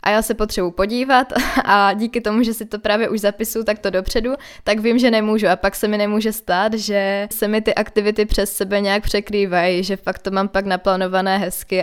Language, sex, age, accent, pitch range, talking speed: Czech, female, 20-39, native, 185-215 Hz, 220 wpm